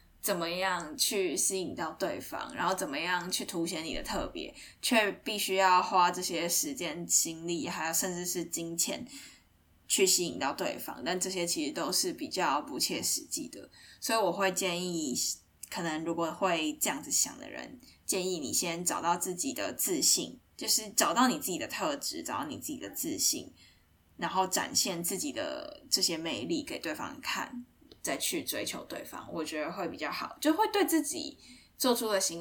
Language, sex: Chinese, female